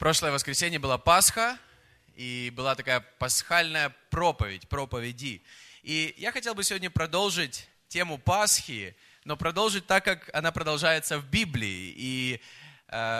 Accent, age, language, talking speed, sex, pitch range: native, 20-39, Russian, 125 wpm, male, 145-195 Hz